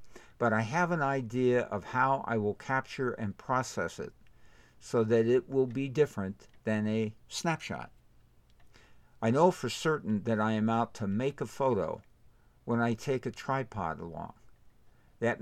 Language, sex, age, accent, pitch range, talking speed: English, male, 60-79, American, 105-125 Hz, 160 wpm